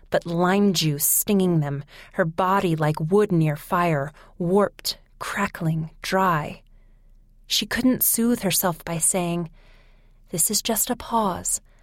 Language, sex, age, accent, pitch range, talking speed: English, female, 30-49, American, 145-205 Hz, 125 wpm